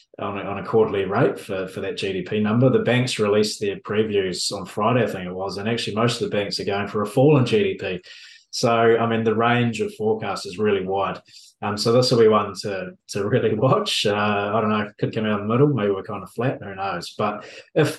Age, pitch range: 20-39, 105-125 Hz